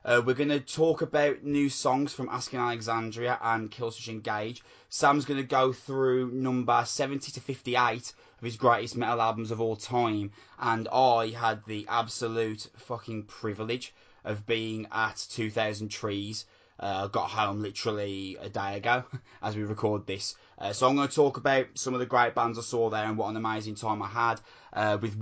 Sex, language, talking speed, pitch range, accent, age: male, English, 185 wpm, 110-125 Hz, British, 20-39